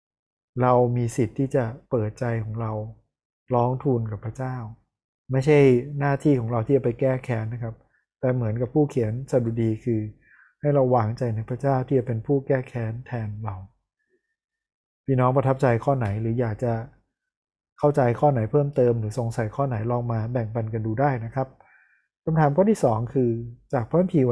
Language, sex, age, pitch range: Thai, male, 20-39, 115-140 Hz